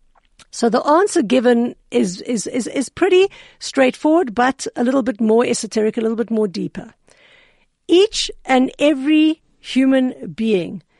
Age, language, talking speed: 60-79, English, 140 wpm